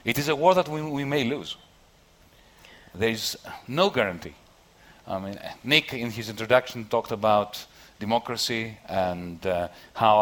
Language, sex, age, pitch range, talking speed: English, male, 40-59, 90-115 Hz, 145 wpm